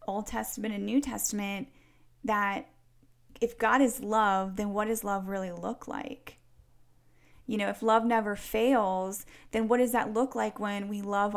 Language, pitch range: English, 205-250 Hz